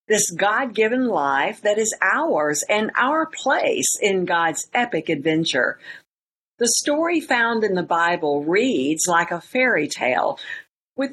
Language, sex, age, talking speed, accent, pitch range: English, female, 50-69, 135 wpm, American, 170-260 Hz